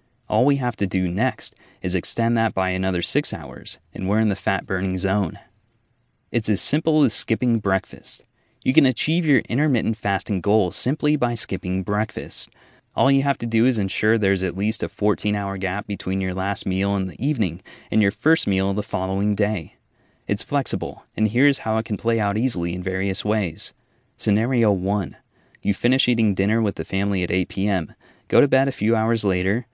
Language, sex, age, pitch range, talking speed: English, male, 20-39, 95-120 Hz, 190 wpm